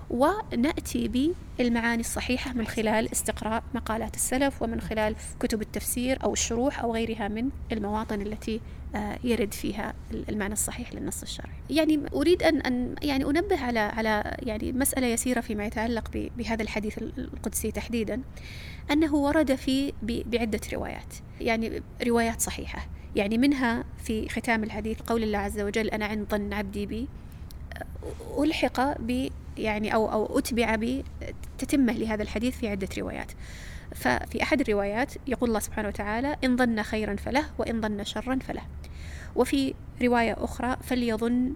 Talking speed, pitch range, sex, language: 135 wpm, 215-255 Hz, female, Arabic